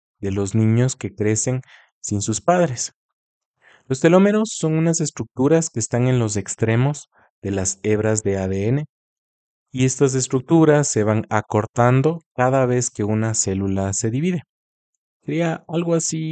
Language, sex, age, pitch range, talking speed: Spanish, male, 30-49, 105-140 Hz, 145 wpm